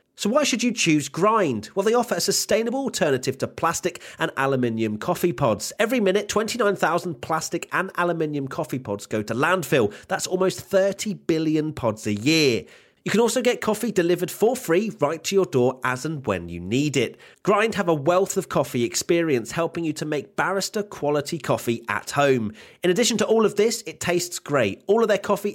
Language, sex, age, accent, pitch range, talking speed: English, male, 30-49, British, 135-195 Hz, 195 wpm